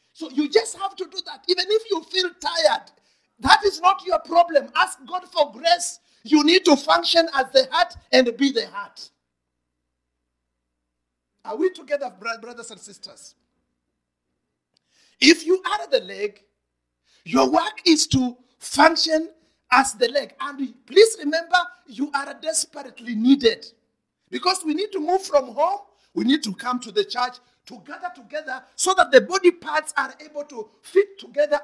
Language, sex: English, male